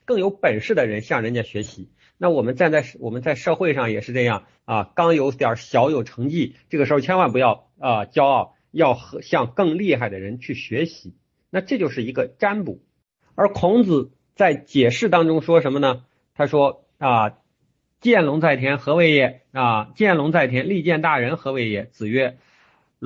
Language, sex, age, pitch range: Chinese, male, 50-69, 115-165 Hz